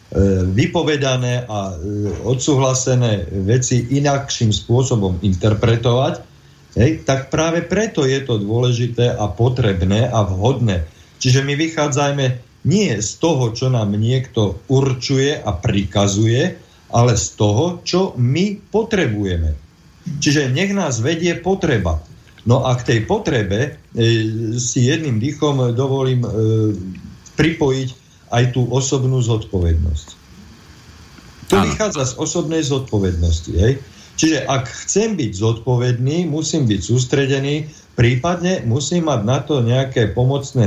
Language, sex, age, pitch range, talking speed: Slovak, male, 40-59, 105-140 Hz, 110 wpm